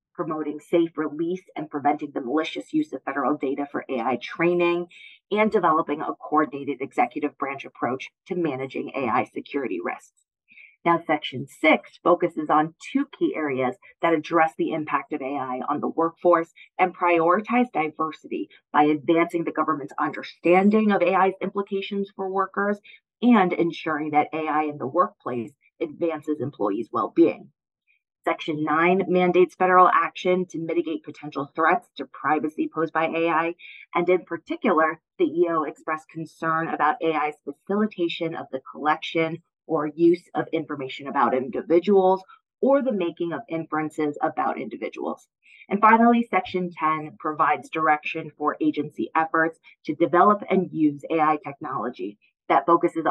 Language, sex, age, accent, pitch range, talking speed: English, female, 30-49, American, 155-185 Hz, 140 wpm